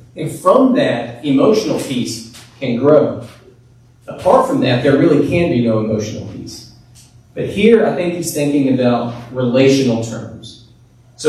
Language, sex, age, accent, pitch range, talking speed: English, male, 30-49, American, 120-155 Hz, 145 wpm